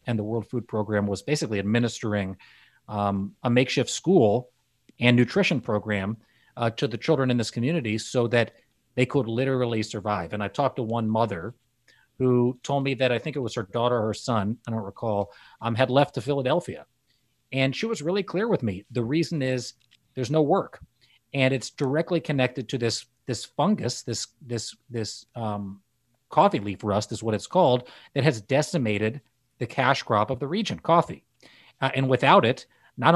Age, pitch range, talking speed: 30-49, 110-135 Hz, 185 wpm